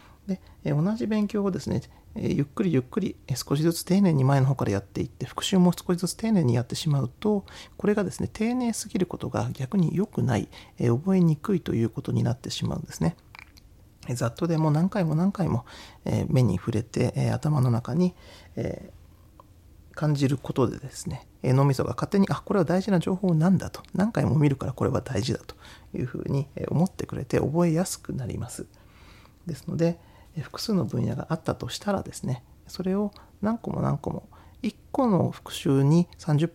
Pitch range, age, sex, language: 125-185 Hz, 40-59, male, Japanese